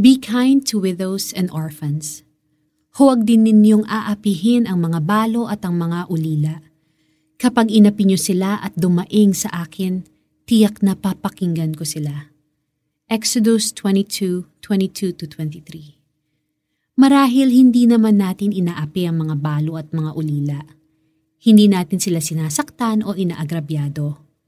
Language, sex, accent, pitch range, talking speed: Filipino, female, native, 155-210 Hz, 125 wpm